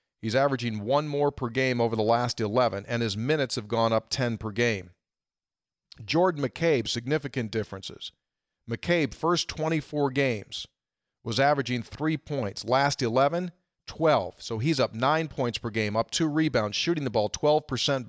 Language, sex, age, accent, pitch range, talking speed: English, male, 40-59, American, 115-145 Hz, 160 wpm